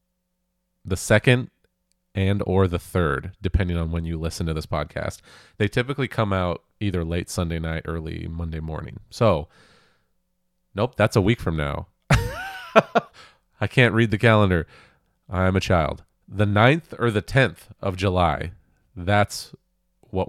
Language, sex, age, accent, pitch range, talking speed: English, male, 30-49, American, 85-105 Hz, 150 wpm